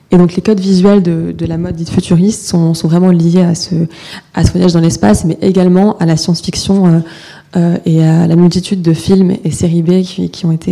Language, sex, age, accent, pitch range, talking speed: French, female, 20-39, French, 165-185 Hz, 240 wpm